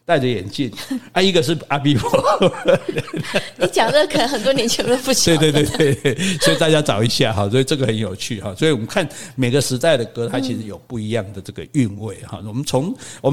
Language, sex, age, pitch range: Chinese, male, 60-79, 120-160 Hz